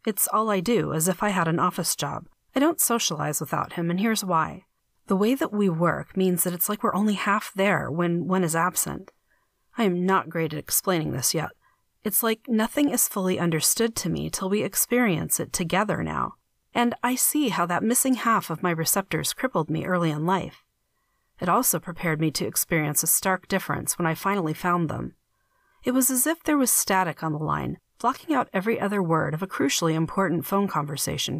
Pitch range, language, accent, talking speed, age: 160-215 Hz, English, American, 205 wpm, 40-59